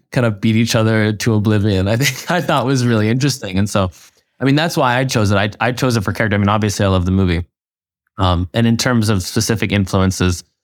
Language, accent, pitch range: English, American, 95-115 Hz